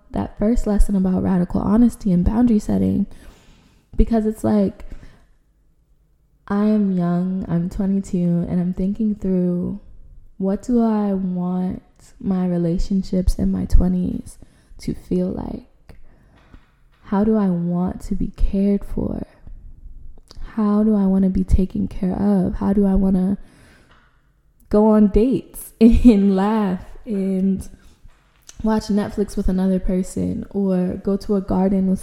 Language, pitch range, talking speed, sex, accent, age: English, 180-210 Hz, 135 wpm, female, American, 10-29